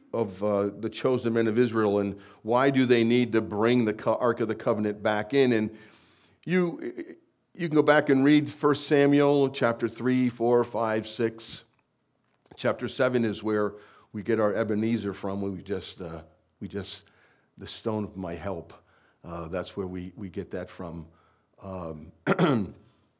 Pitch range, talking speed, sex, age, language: 100-130 Hz, 170 wpm, male, 50-69, English